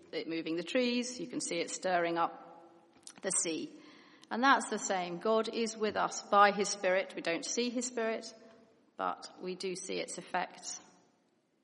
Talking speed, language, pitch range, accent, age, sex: 175 wpm, English, 180-210 Hz, British, 40-59, female